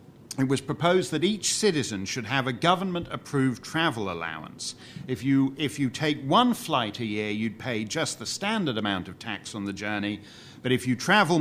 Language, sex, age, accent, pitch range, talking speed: English, male, 40-59, British, 115-160 Hz, 190 wpm